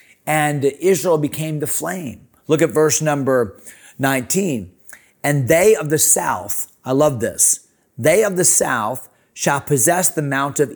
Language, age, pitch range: English, 30-49, 130-175 Hz